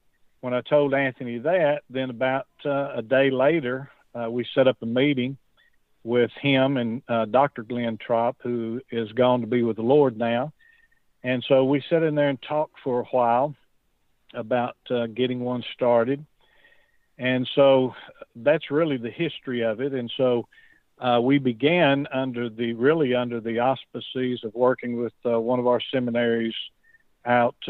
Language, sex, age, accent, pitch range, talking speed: English, male, 50-69, American, 120-135 Hz, 165 wpm